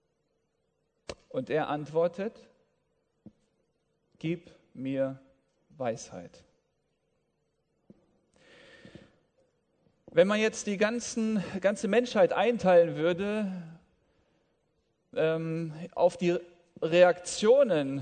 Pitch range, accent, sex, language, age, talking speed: 165-220 Hz, German, male, German, 40-59, 60 wpm